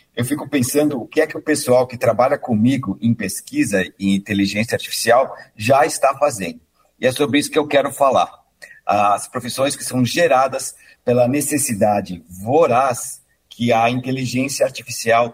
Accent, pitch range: Brazilian, 115-145 Hz